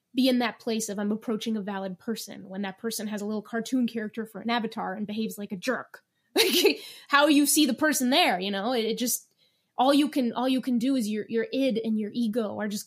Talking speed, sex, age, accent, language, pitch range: 240 wpm, female, 20-39, American, English, 210-265 Hz